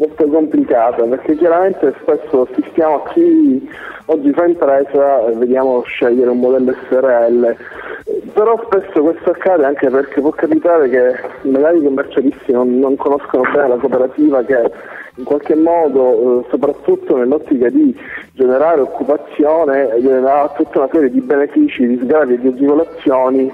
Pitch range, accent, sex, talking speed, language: 125-155 Hz, native, male, 140 wpm, Italian